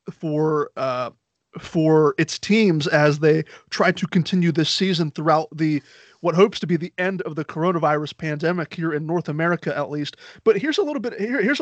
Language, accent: English, American